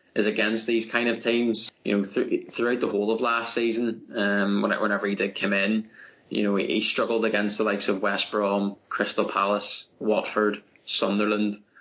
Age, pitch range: 20-39, 105-115 Hz